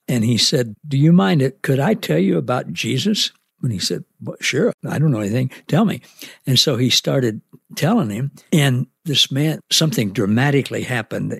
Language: English